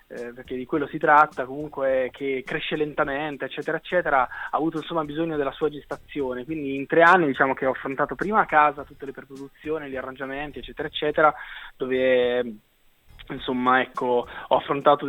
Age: 20-39